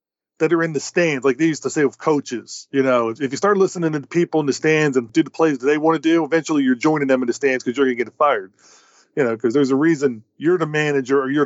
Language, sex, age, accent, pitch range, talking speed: English, male, 30-49, American, 135-165 Hz, 300 wpm